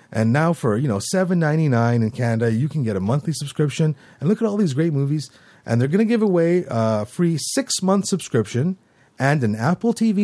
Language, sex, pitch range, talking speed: English, male, 120-185 Hz, 205 wpm